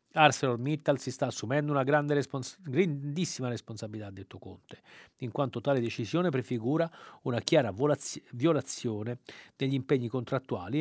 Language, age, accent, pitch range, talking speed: Italian, 40-59, native, 110-150 Hz, 135 wpm